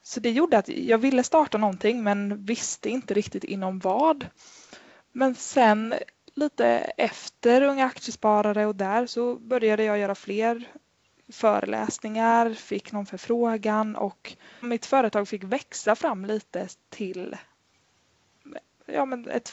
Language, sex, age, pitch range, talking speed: Swedish, female, 20-39, 200-250 Hz, 125 wpm